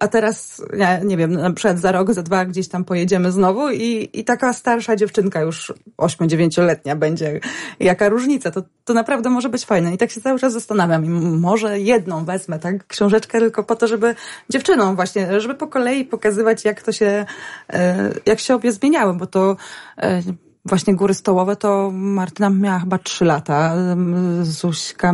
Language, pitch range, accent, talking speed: Polish, 180-225 Hz, native, 170 wpm